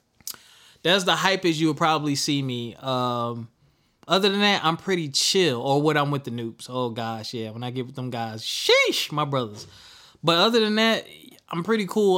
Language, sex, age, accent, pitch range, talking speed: English, male, 20-39, American, 125-175 Hz, 200 wpm